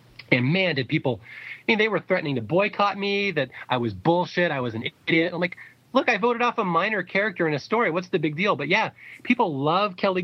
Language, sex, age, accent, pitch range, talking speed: English, male, 30-49, American, 120-165 Hz, 240 wpm